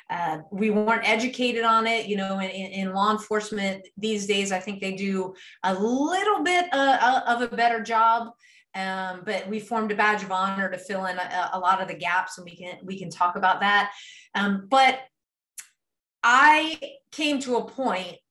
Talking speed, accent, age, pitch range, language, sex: 190 wpm, American, 30-49, 195-265 Hz, English, female